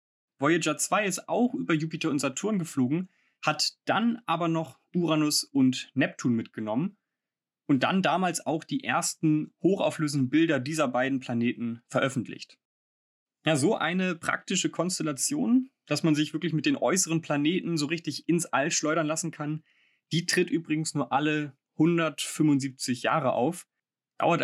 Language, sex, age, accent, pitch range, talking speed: German, male, 30-49, German, 140-180 Hz, 140 wpm